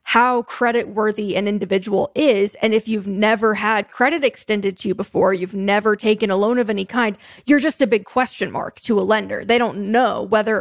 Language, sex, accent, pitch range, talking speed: English, female, American, 205-250 Hz, 210 wpm